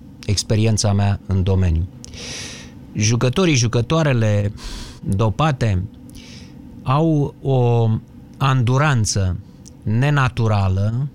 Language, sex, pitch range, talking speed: Romanian, male, 110-145 Hz, 60 wpm